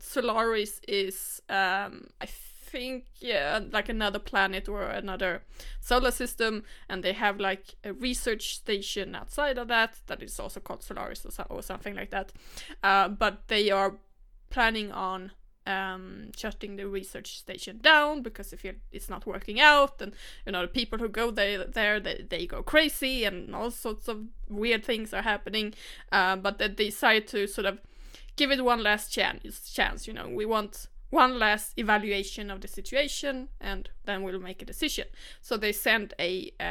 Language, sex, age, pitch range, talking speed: English, female, 20-39, 195-235 Hz, 170 wpm